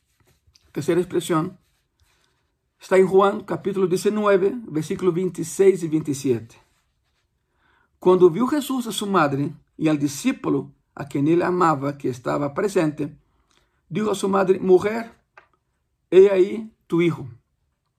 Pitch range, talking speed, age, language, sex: 150-200 Hz, 120 wpm, 60-79, Spanish, male